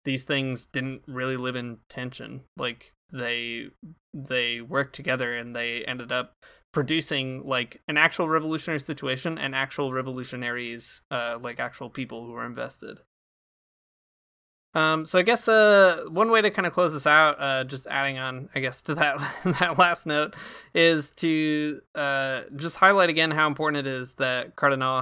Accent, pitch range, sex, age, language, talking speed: American, 130-160 Hz, male, 20-39, English, 165 wpm